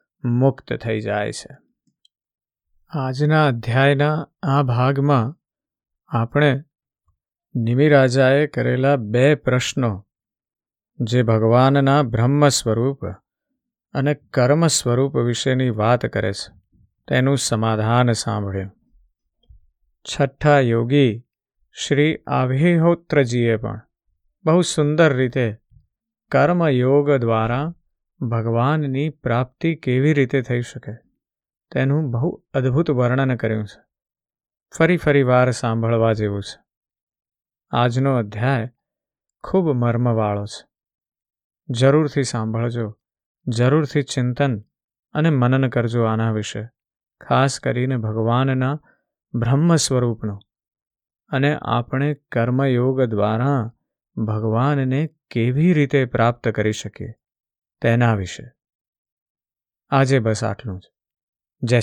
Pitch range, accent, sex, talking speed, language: 115-145 Hz, native, male, 85 wpm, Gujarati